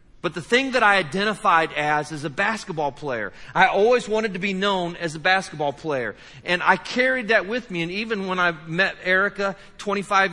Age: 40-59